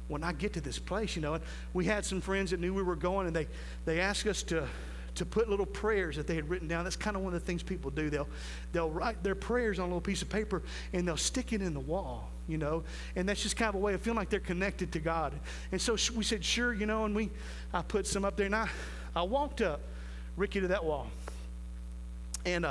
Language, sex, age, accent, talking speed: English, male, 40-59, American, 265 wpm